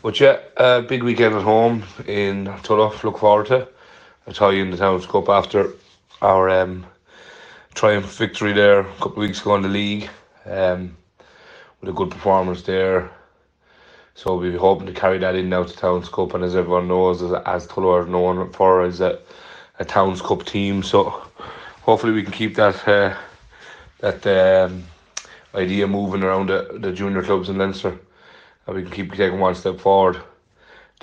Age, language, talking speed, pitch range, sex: 30-49, English, 180 wpm, 90-105 Hz, male